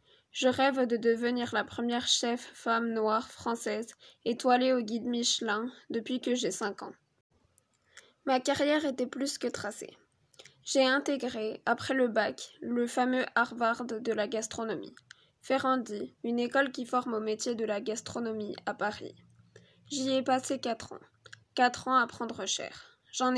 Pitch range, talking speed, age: 220-255 Hz, 150 wpm, 10-29